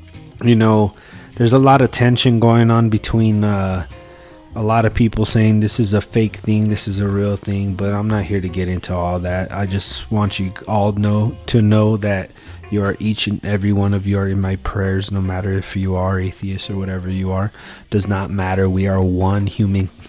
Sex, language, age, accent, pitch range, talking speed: male, English, 30-49, American, 95-105 Hz, 220 wpm